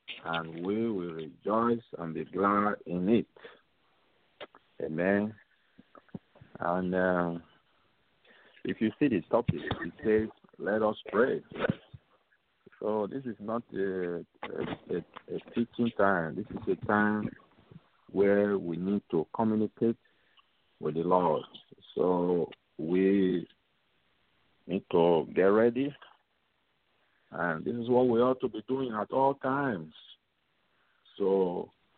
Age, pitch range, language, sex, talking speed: 50-69, 85-105 Hz, English, male, 115 wpm